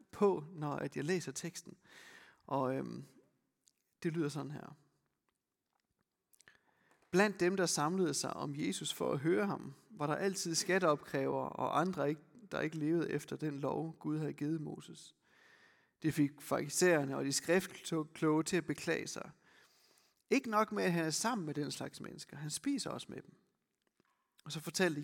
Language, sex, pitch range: Danish, male, 150-195 Hz